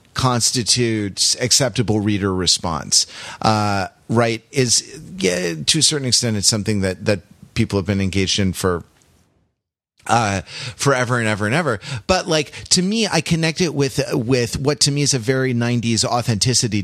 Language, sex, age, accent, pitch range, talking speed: English, male, 30-49, American, 105-135 Hz, 155 wpm